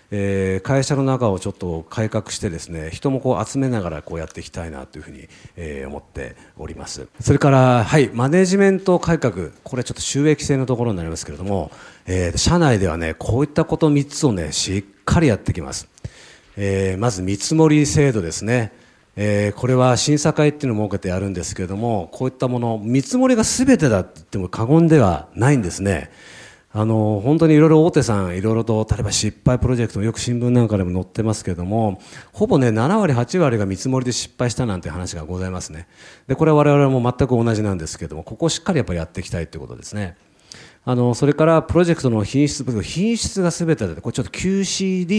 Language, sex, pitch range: Japanese, male, 100-150 Hz